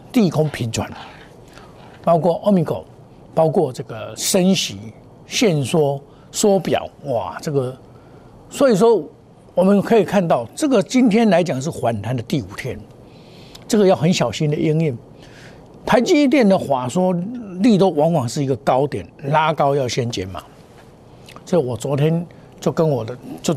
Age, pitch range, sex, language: 60-79, 125-175 Hz, male, Chinese